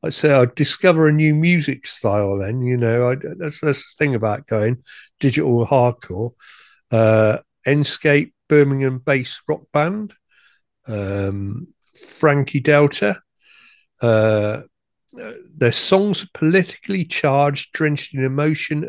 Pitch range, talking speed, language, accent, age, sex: 115-155 Hz, 115 wpm, English, British, 50-69, male